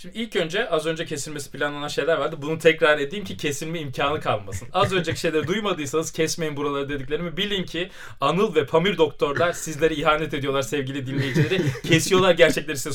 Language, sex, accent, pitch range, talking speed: Turkish, male, native, 130-185 Hz, 170 wpm